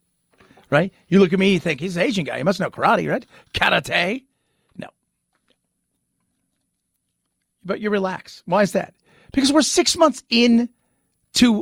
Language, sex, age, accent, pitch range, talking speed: English, male, 50-69, American, 170-230 Hz, 150 wpm